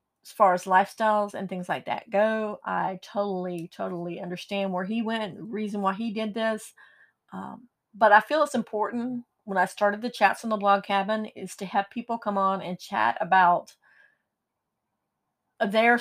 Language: English